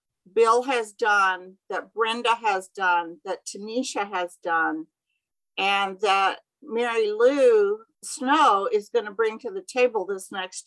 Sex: female